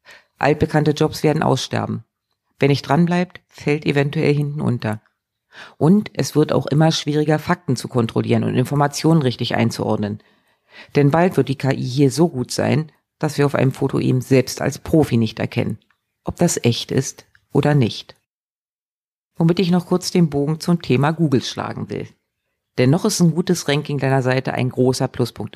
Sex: female